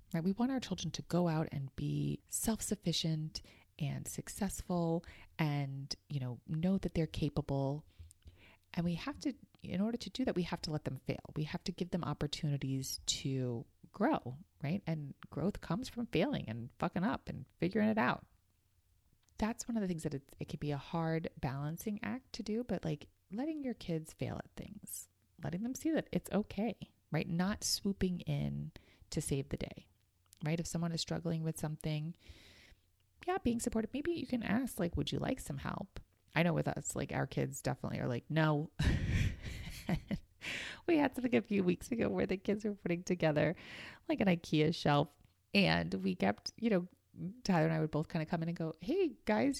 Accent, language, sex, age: American, English, female, 30-49